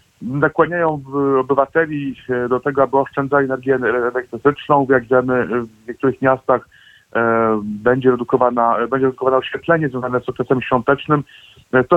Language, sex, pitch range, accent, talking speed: Polish, male, 125-140 Hz, native, 110 wpm